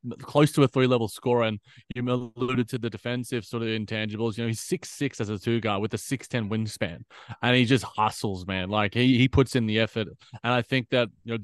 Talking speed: 230 wpm